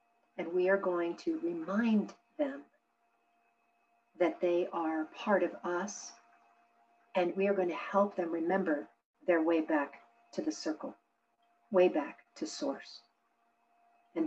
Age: 50-69